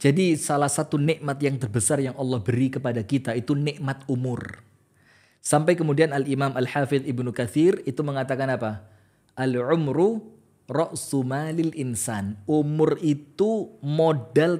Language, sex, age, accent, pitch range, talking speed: Indonesian, male, 20-39, native, 135-170 Hz, 130 wpm